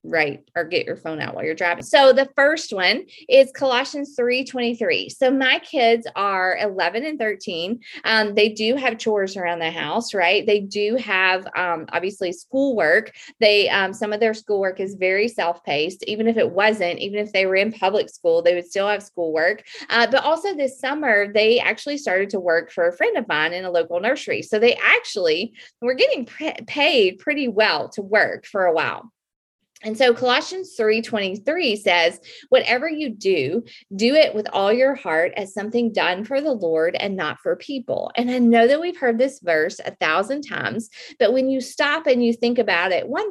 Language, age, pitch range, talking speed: English, 30-49, 195-275 Hz, 200 wpm